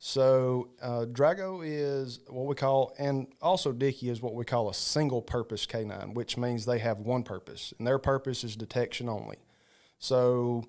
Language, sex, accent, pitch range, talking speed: English, male, American, 120-140 Hz, 170 wpm